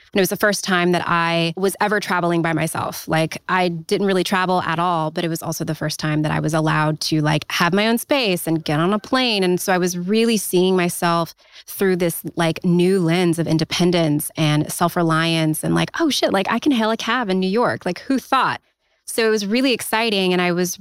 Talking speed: 235 wpm